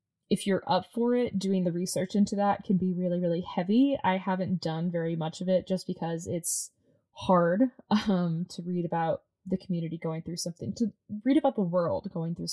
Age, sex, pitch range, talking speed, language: 20-39, female, 175-200 Hz, 200 wpm, English